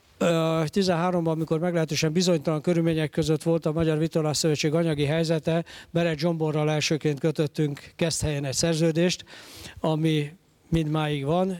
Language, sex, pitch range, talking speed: Hungarian, male, 155-170 Hz, 125 wpm